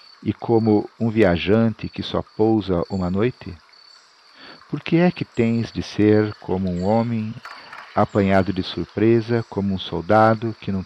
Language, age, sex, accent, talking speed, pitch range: Portuguese, 50-69, male, Brazilian, 150 wpm, 95-120 Hz